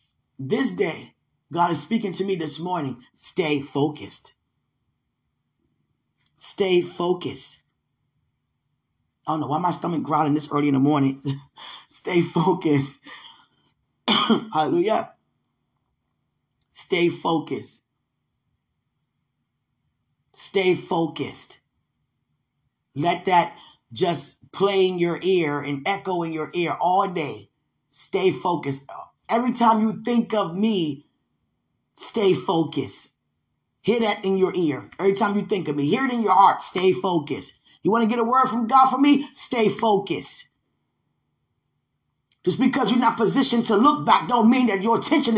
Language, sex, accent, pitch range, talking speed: English, male, American, 155-215 Hz, 130 wpm